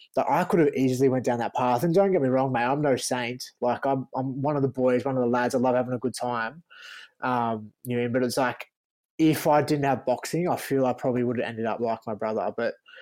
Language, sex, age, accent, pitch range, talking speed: English, male, 20-39, Australian, 120-140 Hz, 265 wpm